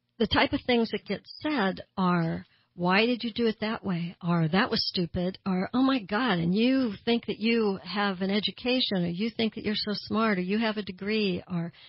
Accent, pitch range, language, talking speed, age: American, 175-215 Hz, English, 220 wpm, 60-79